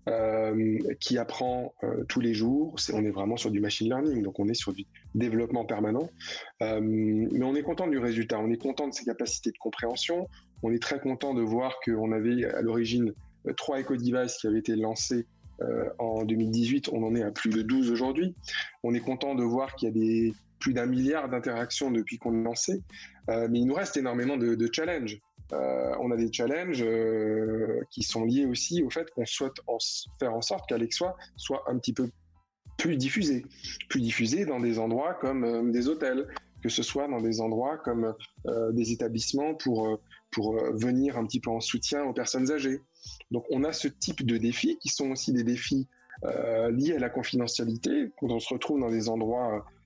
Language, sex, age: French, male, 20-39